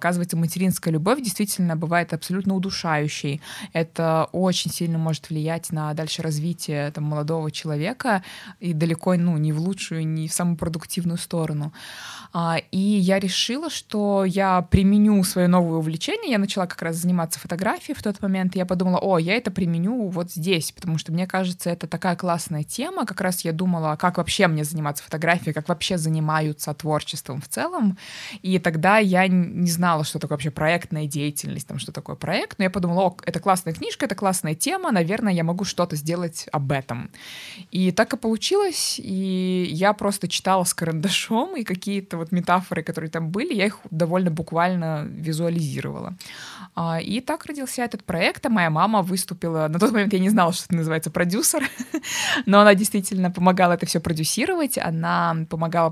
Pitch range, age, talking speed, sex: 160-195 Hz, 20-39, 170 wpm, female